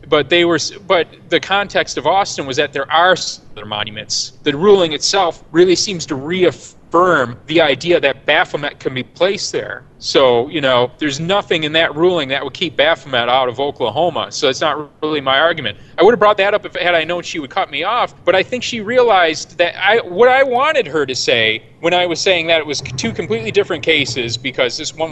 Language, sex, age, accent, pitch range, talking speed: English, male, 30-49, American, 140-190 Hz, 215 wpm